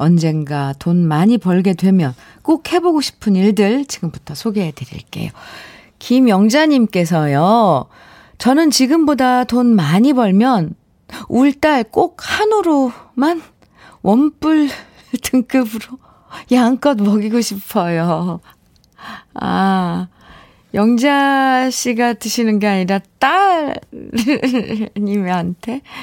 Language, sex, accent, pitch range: Korean, female, native, 180-260 Hz